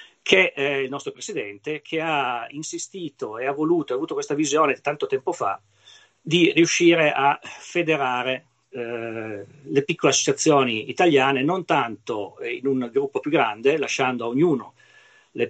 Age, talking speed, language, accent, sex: 40-59, 150 wpm, Italian, native, male